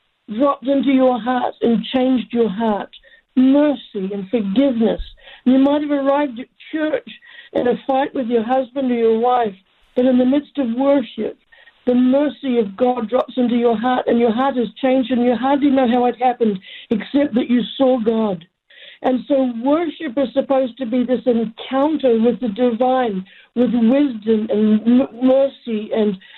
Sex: female